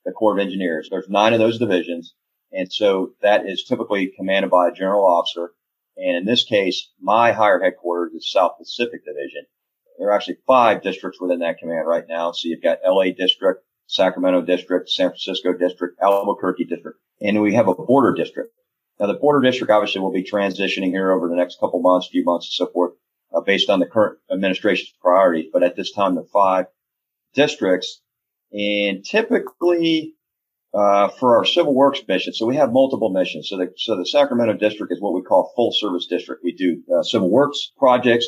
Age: 40-59